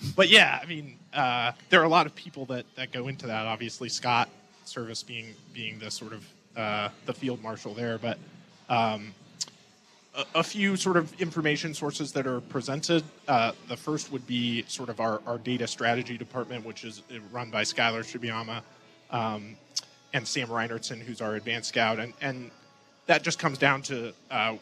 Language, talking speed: English, 185 wpm